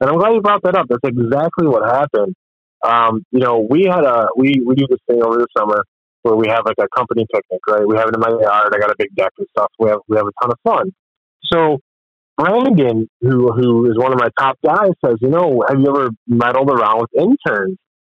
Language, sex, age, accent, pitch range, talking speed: English, male, 30-49, American, 115-150 Hz, 245 wpm